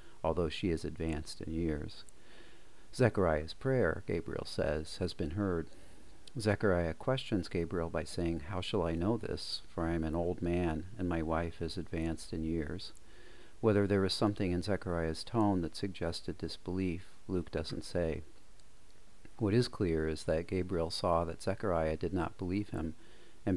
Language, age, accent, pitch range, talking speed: English, 40-59, American, 80-95 Hz, 160 wpm